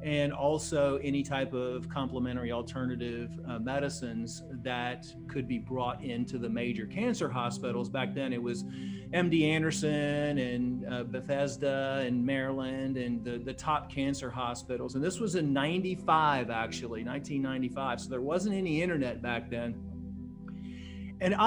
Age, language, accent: 40-59, English, American